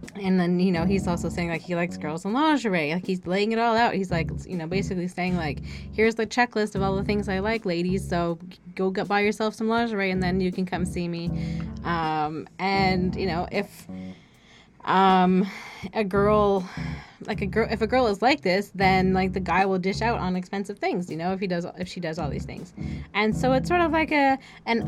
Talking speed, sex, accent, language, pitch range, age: 230 wpm, female, American, English, 180-230 Hz, 20-39